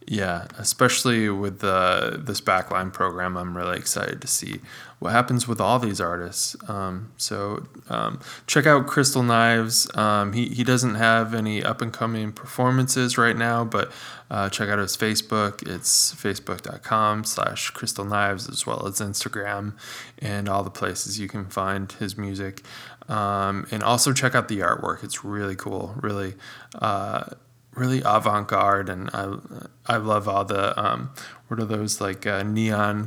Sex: male